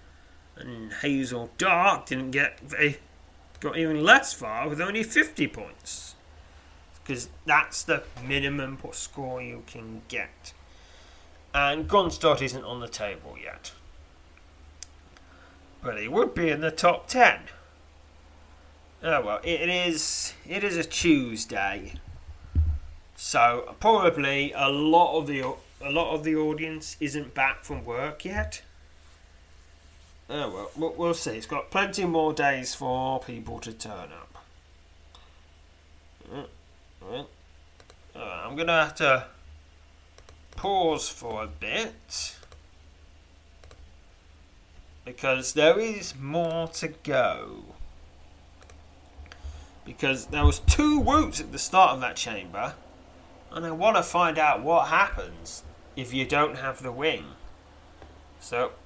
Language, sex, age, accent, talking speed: English, male, 30-49, British, 125 wpm